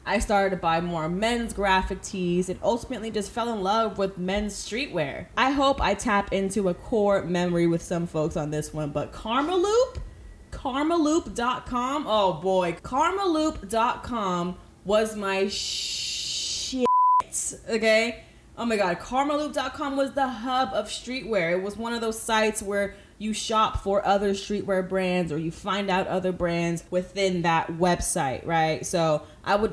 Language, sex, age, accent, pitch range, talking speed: English, female, 20-39, American, 180-230 Hz, 165 wpm